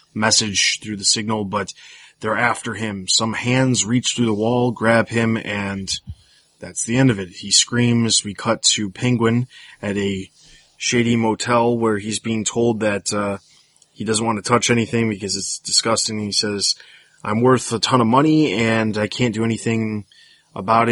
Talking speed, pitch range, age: 175 wpm, 100-115 Hz, 20-39